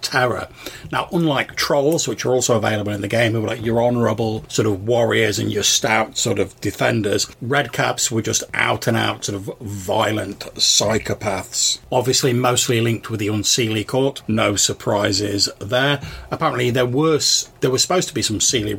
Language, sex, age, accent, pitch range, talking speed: English, male, 40-59, British, 105-125 Hz, 180 wpm